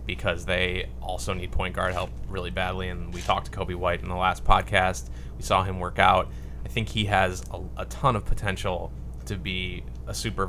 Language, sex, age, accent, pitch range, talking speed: English, male, 20-39, American, 85-100 Hz, 210 wpm